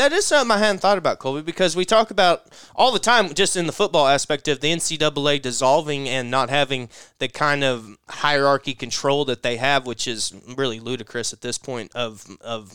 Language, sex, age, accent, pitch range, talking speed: English, male, 20-39, American, 135-195 Hz, 205 wpm